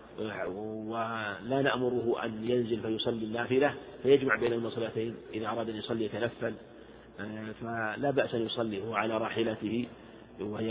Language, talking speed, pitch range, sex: Arabic, 130 wpm, 110-125 Hz, male